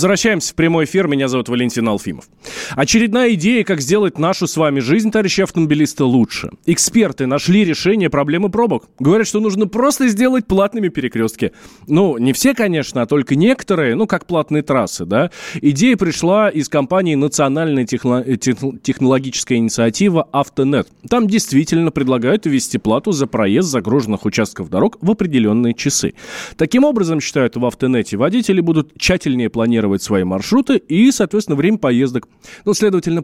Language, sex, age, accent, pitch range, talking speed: Russian, male, 20-39, native, 125-200 Hz, 150 wpm